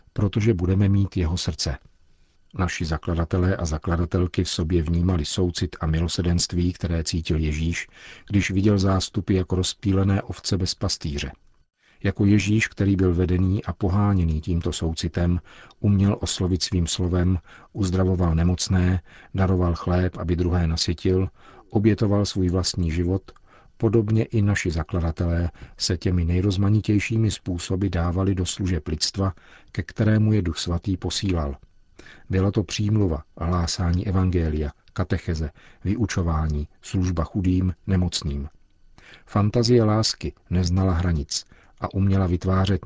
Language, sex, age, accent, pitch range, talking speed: Czech, male, 50-69, native, 85-100 Hz, 120 wpm